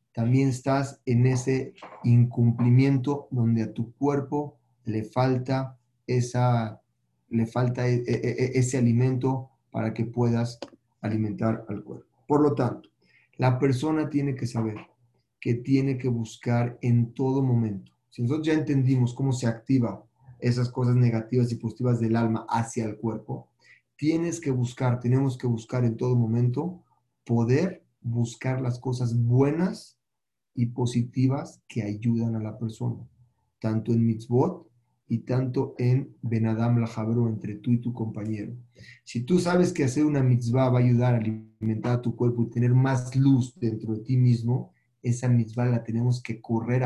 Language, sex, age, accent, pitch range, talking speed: Spanish, male, 40-59, Mexican, 115-130 Hz, 150 wpm